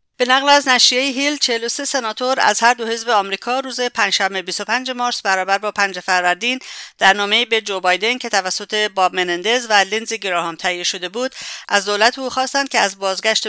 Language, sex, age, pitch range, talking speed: English, female, 50-69, 185-230 Hz, 180 wpm